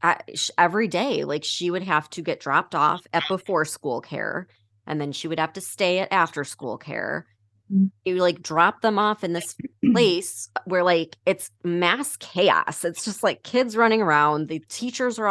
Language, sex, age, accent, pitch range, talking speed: English, female, 20-39, American, 145-180 Hz, 185 wpm